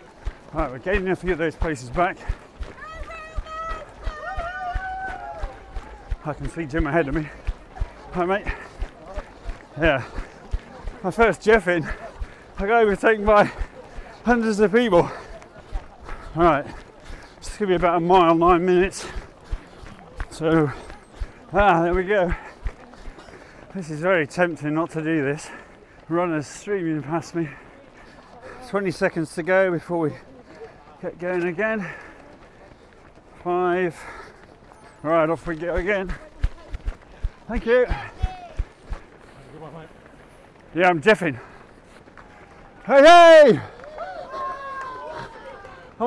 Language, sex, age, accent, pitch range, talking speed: English, male, 30-49, British, 170-245 Hz, 105 wpm